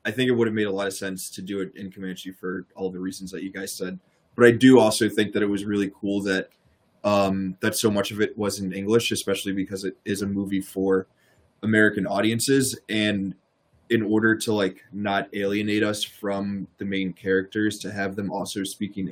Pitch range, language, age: 95-105 Hz, English, 20-39